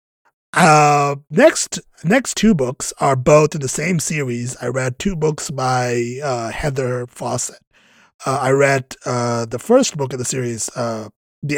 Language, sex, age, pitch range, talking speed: English, male, 30-49, 125-155 Hz, 160 wpm